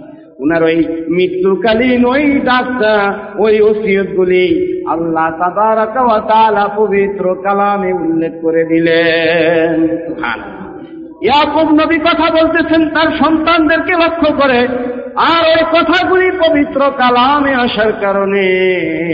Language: Bengali